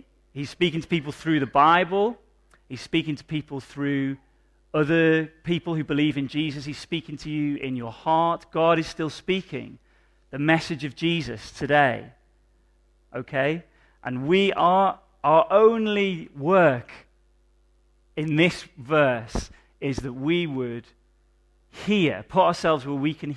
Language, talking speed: English, 140 wpm